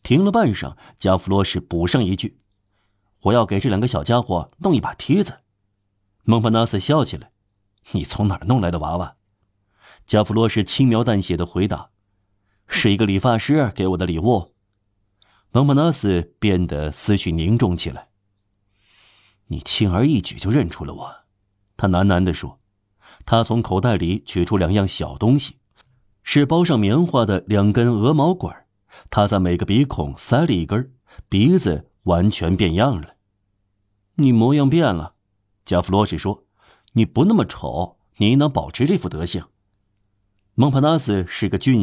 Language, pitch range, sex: Chinese, 95-115 Hz, male